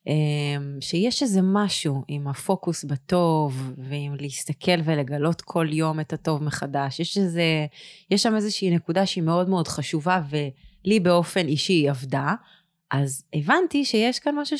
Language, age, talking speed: Hebrew, 20-39, 140 wpm